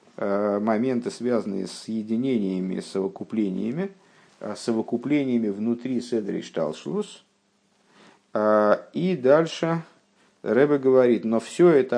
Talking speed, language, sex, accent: 80 wpm, Russian, male, native